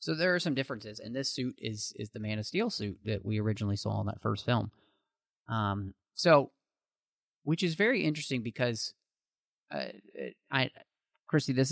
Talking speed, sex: 175 wpm, male